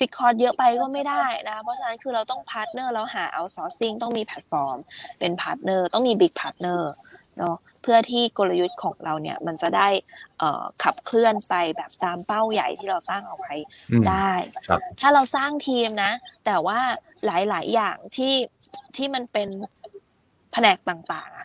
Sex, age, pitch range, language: female, 20-39, 185-250 Hz, Thai